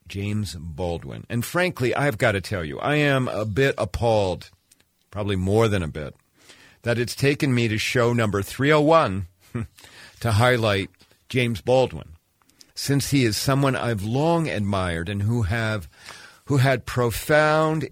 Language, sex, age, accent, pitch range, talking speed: English, male, 50-69, American, 95-125 Hz, 145 wpm